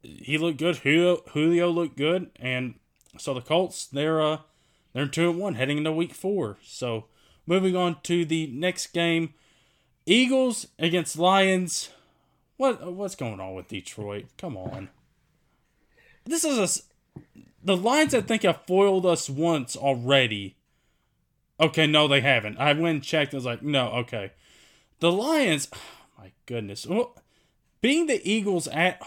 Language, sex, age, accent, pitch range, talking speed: English, male, 20-39, American, 140-195 Hz, 145 wpm